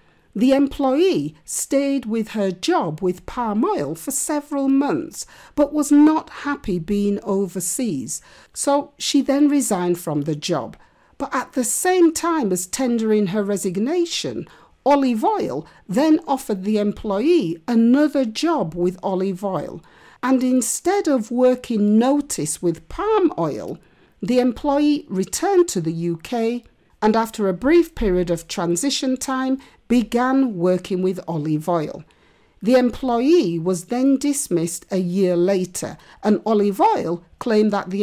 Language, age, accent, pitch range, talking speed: English, 50-69, British, 190-280 Hz, 135 wpm